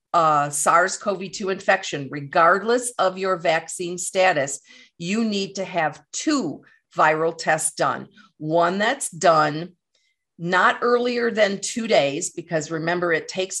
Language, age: English, 50-69